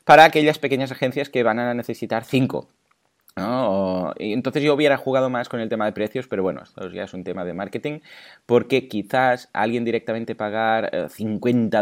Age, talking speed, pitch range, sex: 20-39, 180 wpm, 95-125 Hz, male